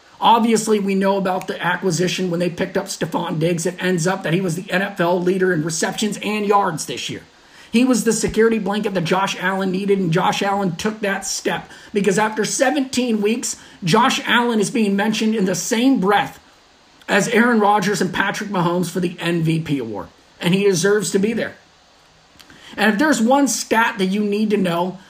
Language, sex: English, male